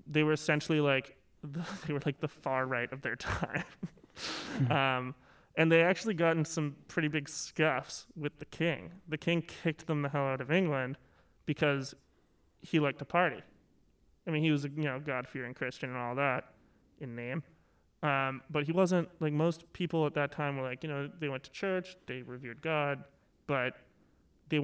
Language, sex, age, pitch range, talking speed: English, male, 20-39, 135-160 Hz, 185 wpm